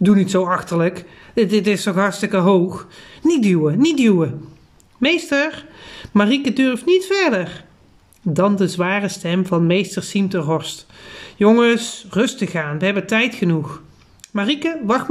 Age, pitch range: 40-59, 170-225 Hz